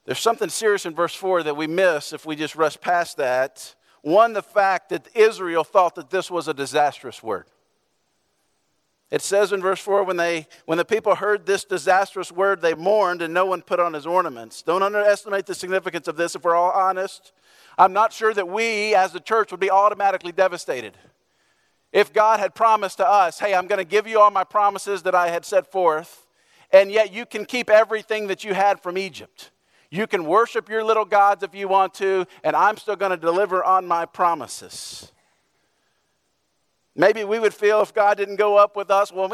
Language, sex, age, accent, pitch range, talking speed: English, male, 50-69, American, 175-210 Hz, 205 wpm